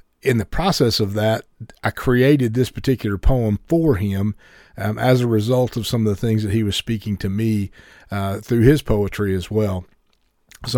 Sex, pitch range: male, 105-125 Hz